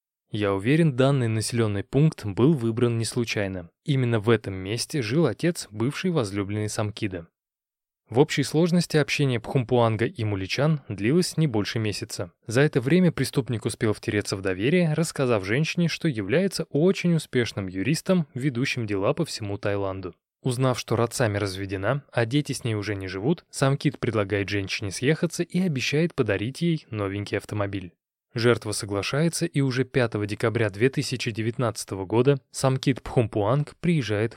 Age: 20-39